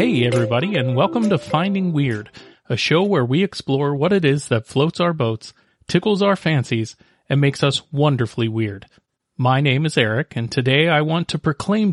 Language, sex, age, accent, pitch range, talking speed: English, male, 40-59, American, 125-185 Hz, 185 wpm